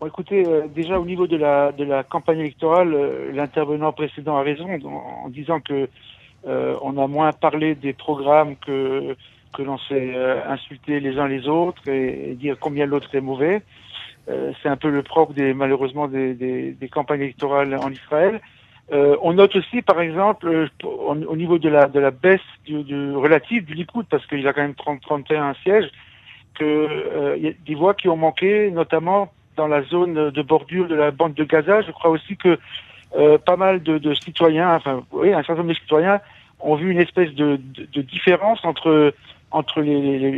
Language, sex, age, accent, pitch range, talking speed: French, male, 60-79, French, 140-170 Hz, 205 wpm